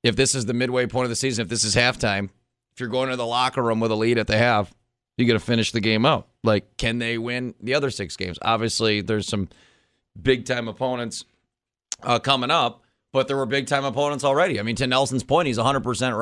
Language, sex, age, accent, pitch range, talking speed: English, male, 30-49, American, 115-135 Hz, 235 wpm